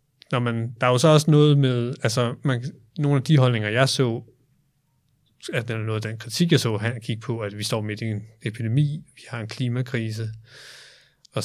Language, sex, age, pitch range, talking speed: Danish, male, 20-39, 110-125 Hz, 210 wpm